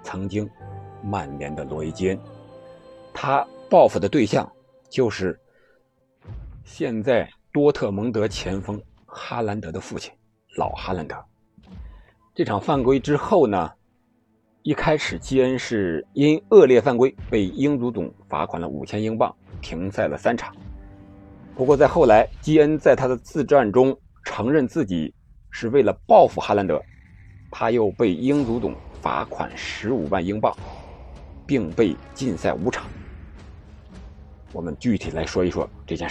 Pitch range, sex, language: 80-130 Hz, male, Chinese